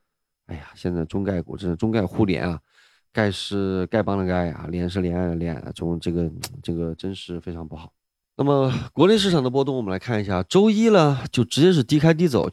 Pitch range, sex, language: 95-135 Hz, male, Chinese